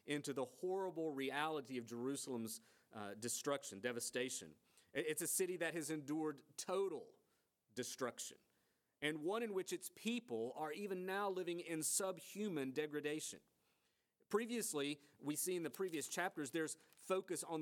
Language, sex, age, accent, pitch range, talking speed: English, male, 40-59, American, 130-165 Hz, 135 wpm